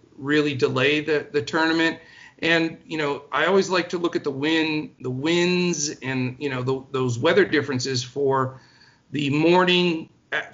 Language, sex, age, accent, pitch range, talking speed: English, male, 50-69, American, 130-165 Hz, 165 wpm